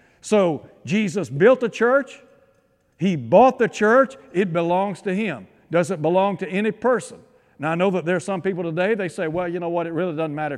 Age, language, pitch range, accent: 60-79, English, 160-210 Hz, American